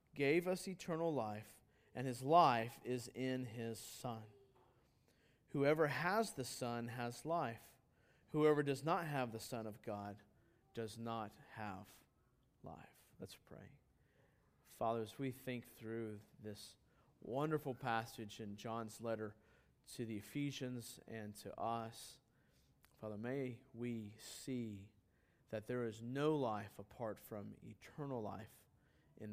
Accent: American